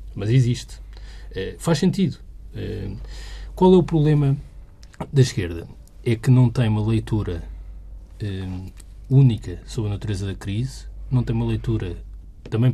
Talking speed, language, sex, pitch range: 140 wpm, Portuguese, male, 100-140 Hz